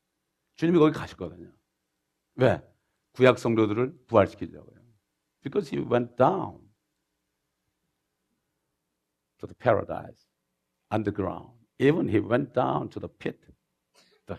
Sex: male